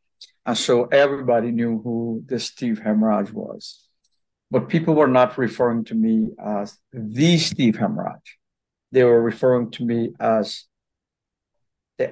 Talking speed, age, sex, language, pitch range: 135 wpm, 50-69, male, English, 110-150 Hz